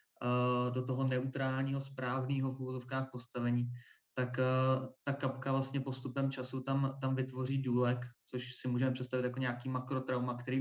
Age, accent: 20-39, native